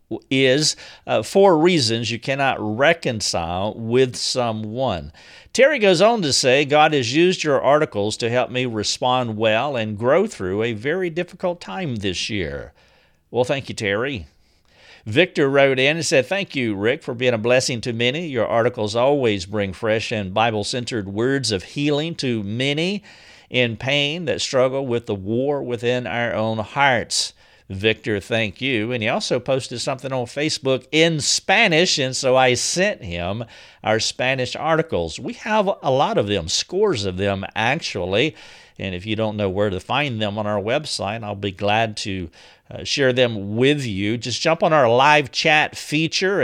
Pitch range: 110-145 Hz